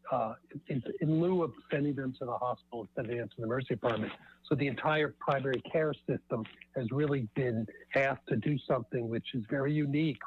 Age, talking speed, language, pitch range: 60-79, 195 wpm, English, 120-150 Hz